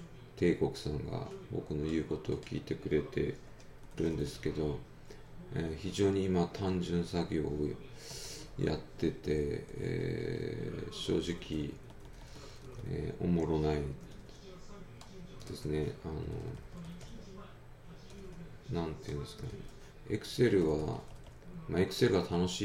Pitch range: 75-95 Hz